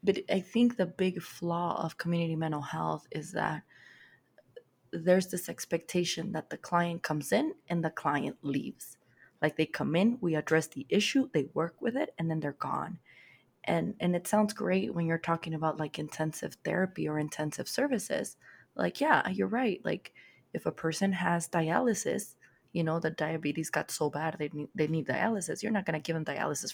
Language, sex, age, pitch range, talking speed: English, female, 20-39, 155-190 Hz, 185 wpm